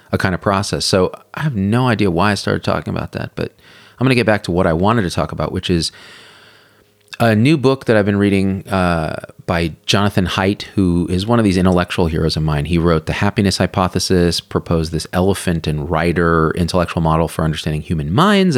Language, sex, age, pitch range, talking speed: English, male, 30-49, 85-115 Hz, 210 wpm